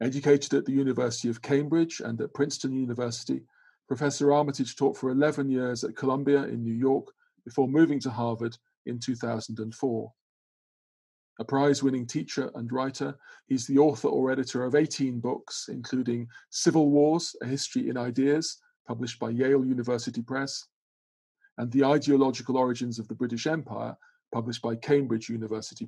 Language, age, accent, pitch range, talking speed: English, 40-59, British, 115-140 Hz, 150 wpm